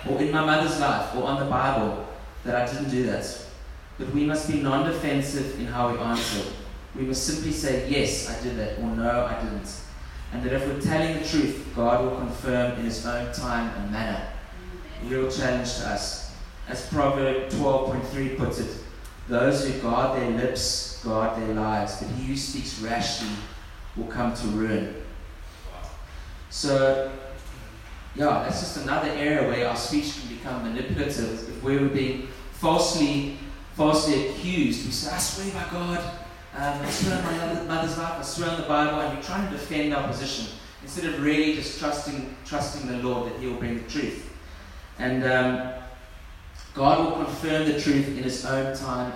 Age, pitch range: 20-39, 110-140 Hz